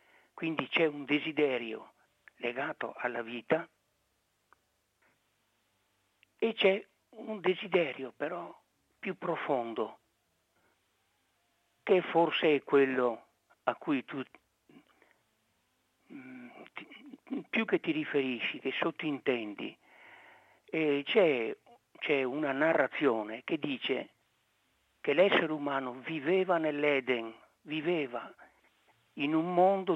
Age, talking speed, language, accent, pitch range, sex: 60-79, 80 wpm, Italian, native, 140-195 Hz, male